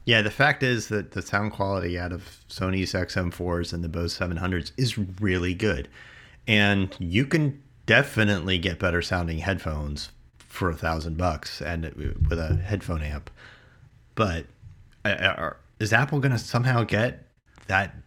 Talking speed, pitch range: 155 wpm, 85-115 Hz